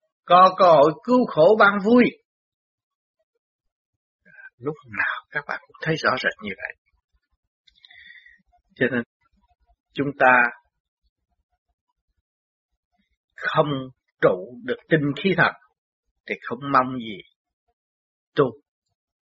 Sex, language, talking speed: male, Vietnamese, 105 wpm